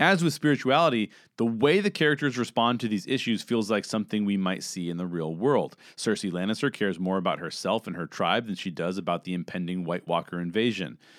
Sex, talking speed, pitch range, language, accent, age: male, 210 wpm, 100-150 Hz, English, American, 30-49